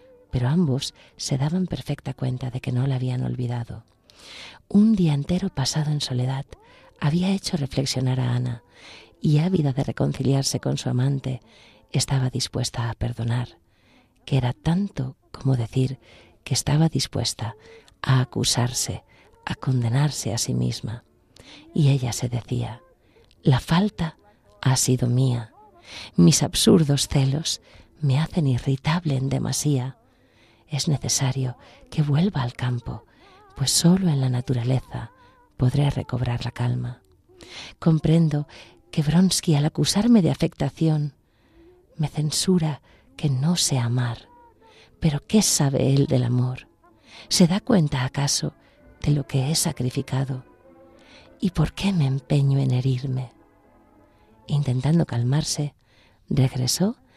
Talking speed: 125 wpm